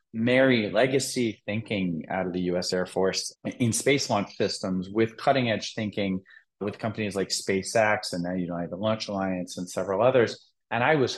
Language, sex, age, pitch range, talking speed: English, male, 30-49, 95-125 Hz, 170 wpm